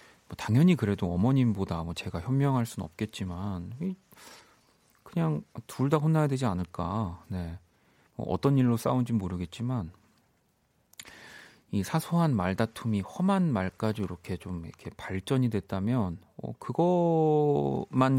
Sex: male